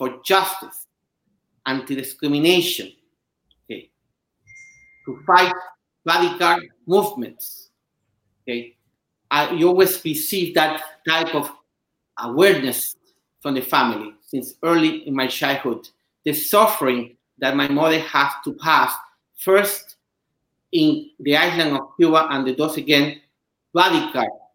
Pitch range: 140-195 Hz